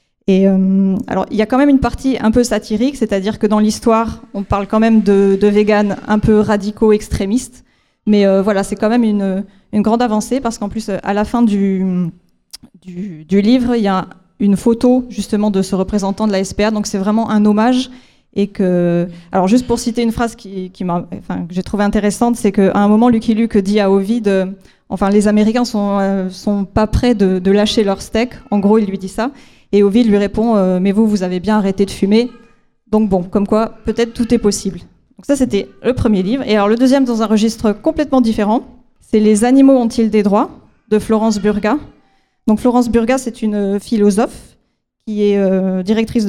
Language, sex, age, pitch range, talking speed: French, female, 20-39, 200-230 Hz, 220 wpm